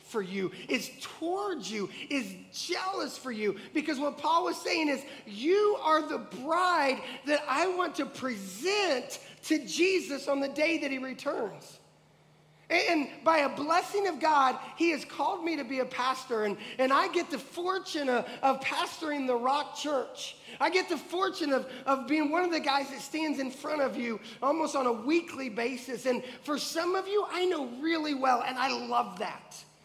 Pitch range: 240-315 Hz